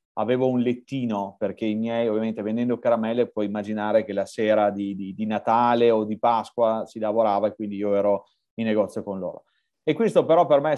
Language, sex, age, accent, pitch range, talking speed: Italian, male, 30-49, native, 110-130 Hz, 205 wpm